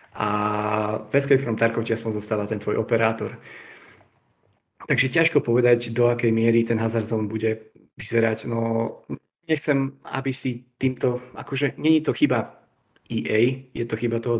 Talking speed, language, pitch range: 140 wpm, Slovak, 110-125 Hz